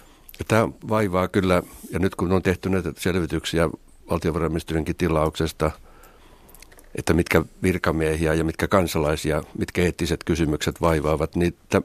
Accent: native